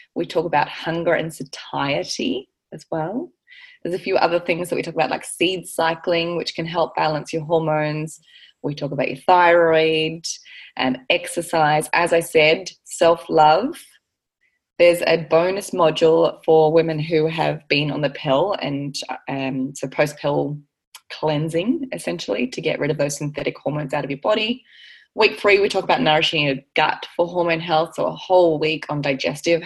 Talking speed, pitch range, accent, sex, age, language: 170 wpm, 150-180 Hz, Australian, female, 20-39, English